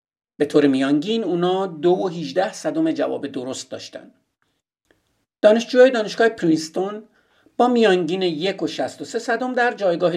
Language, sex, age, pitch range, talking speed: Persian, male, 50-69, 165-245 Hz, 125 wpm